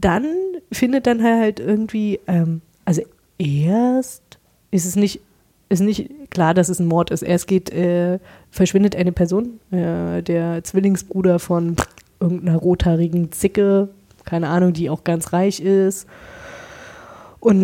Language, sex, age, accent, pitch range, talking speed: German, female, 30-49, German, 170-195 Hz, 140 wpm